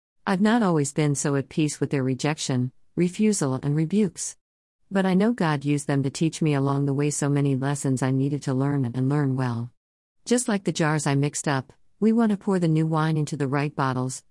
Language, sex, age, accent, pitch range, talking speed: English, female, 50-69, American, 130-160 Hz, 220 wpm